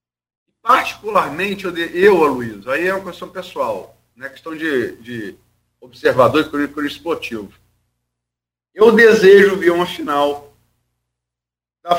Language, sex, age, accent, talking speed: Portuguese, male, 50-69, Brazilian, 130 wpm